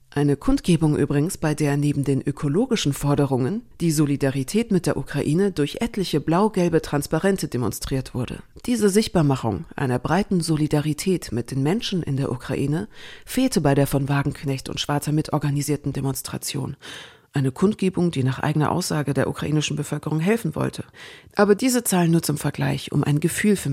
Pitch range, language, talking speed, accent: 140-190 Hz, German, 155 wpm, German